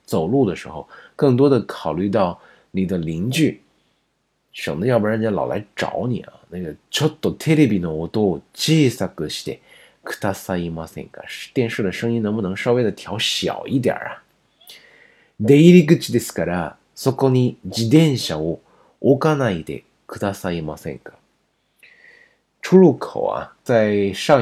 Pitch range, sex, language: 95-145 Hz, male, Chinese